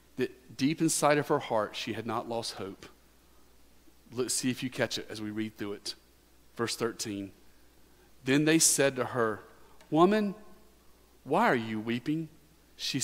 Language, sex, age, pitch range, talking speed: English, male, 40-59, 105-145 Hz, 155 wpm